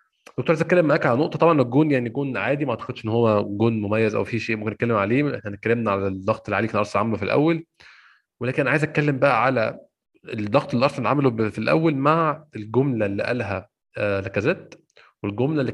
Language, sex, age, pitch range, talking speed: Arabic, male, 20-39, 105-135 Hz, 205 wpm